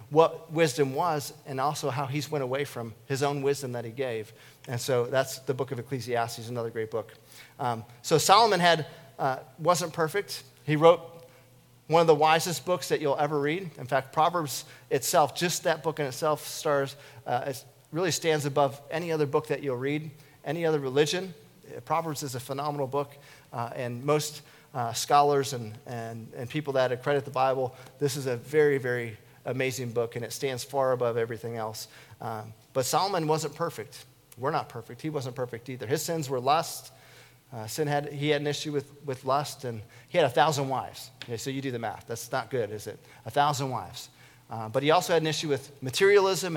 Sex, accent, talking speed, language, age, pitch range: male, American, 200 wpm, English, 40-59, 125-155 Hz